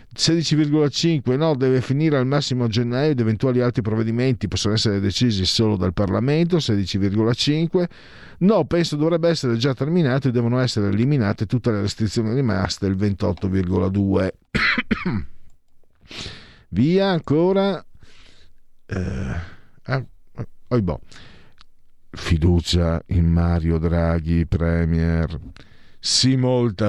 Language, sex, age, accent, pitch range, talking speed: Italian, male, 50-69, native, 90-130 Hz, 100 wpm